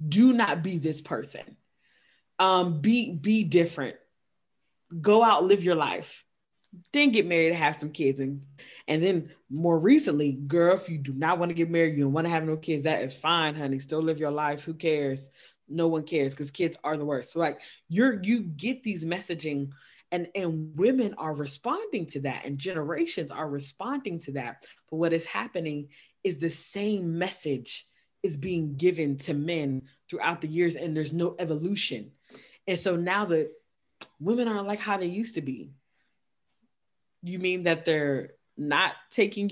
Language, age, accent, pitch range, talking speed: English, 20-39, American, 155-205 Hz, 180 wpm